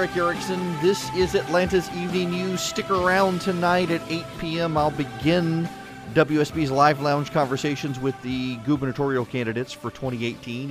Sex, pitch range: male, 120-160 Hz